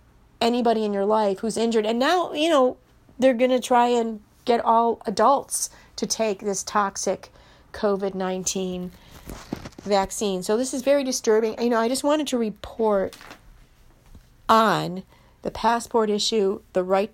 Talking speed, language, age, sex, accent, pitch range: 145 wpm, English, 40-59, female, American, 175-225 Hz